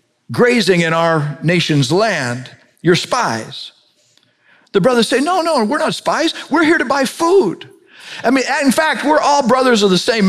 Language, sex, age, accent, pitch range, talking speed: English, male, 50-69, American, 145-205 Hz, 175 wpm